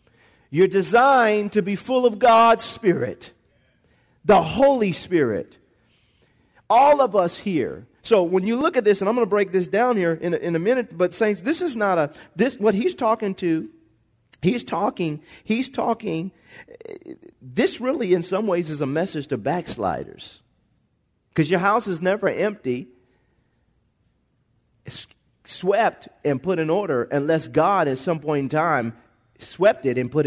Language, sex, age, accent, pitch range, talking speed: English, male, 40-59, American, 155-215 Hz, 165 wpm